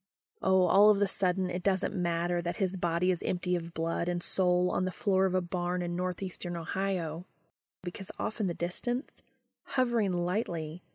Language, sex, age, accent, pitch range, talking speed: English, female, 30-49, American, 175-200 Hz, 180 wpm